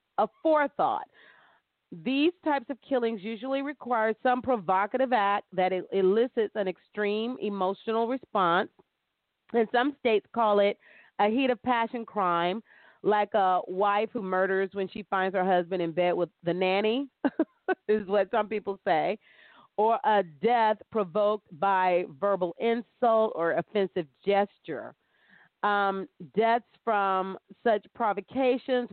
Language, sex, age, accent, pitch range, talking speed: English, female, 40-59, American, 185-230 Hz, 130 wpm